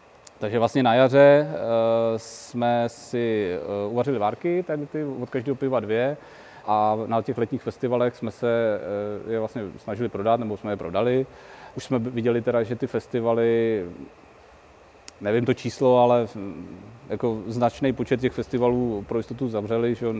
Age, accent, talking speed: 30-49, native, 140 wpm